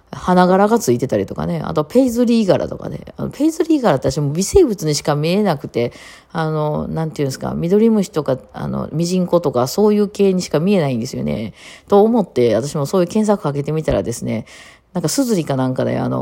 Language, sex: Japanese, female